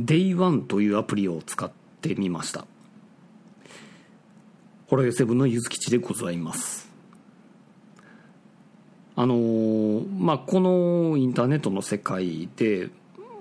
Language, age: Japanese, 40-59